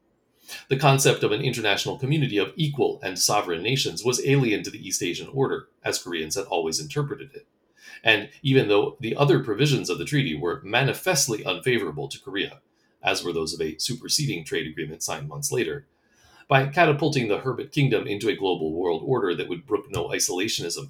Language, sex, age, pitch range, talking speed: English, male, 40-59, 110-150 Hz, 185 wpm